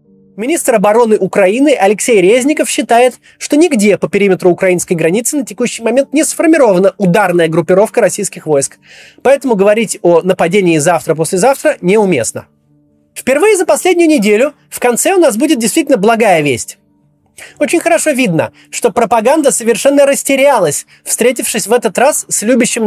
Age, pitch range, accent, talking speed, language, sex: 30-49, 190-280 Hz, native, 135 wpm, Russian, male